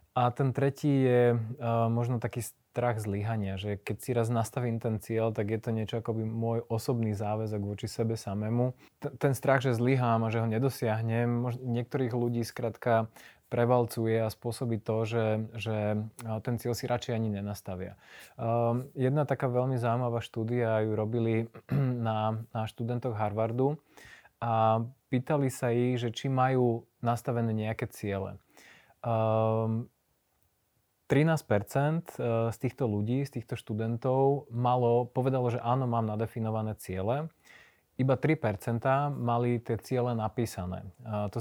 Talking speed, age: 140 wpm, 20-39